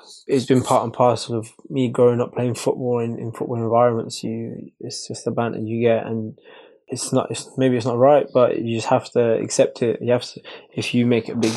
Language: English